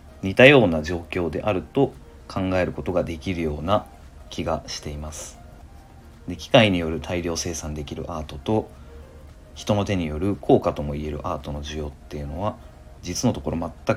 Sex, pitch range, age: male, 75-95 Hz, 40-59